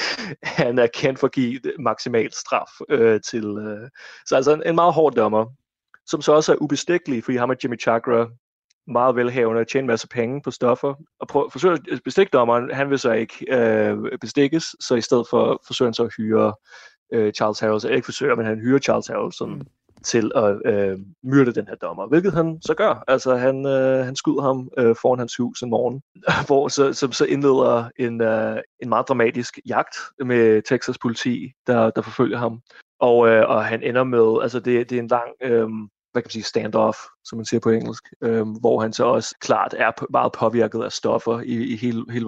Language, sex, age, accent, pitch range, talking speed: Danish, male, 30-49, native, 115-135 Hz, 210 wpm